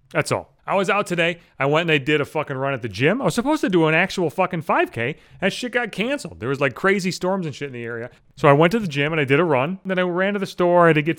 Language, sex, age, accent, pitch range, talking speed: English, male, 30-49, American, 140-190 Hz, 320 wpm